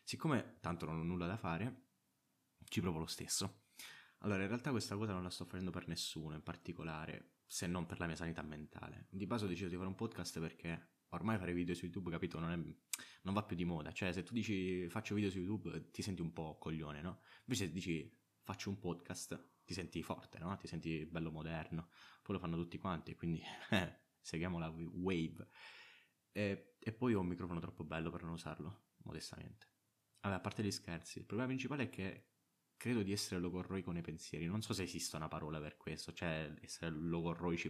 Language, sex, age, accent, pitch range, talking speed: Italian, male, 20-39, native, 80-100 Hz, 205 wpm